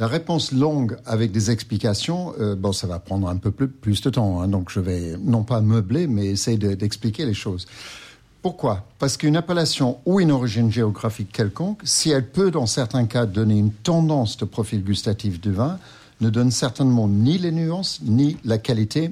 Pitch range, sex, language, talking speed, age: 105-125 Hz, male, French, 190 wpm, 60-79